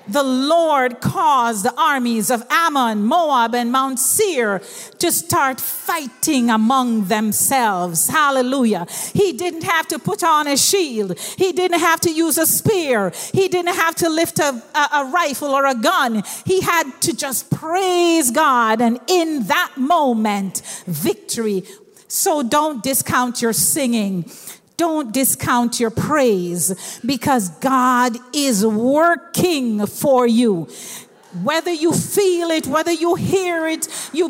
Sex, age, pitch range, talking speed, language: female, 50-69, 225-320 Hz, 140 wpm, English